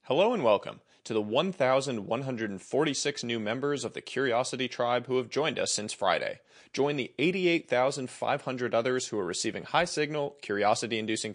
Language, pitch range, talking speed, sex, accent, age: English, 115-150 Hz, 145 wpm, male, American, 30-49